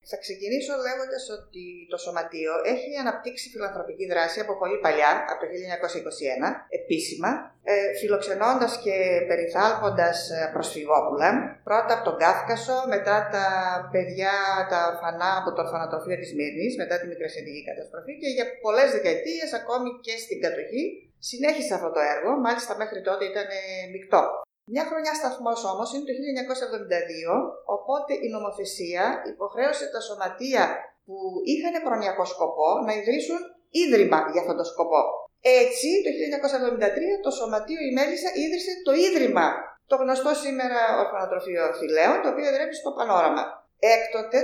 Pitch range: 185-280 Hz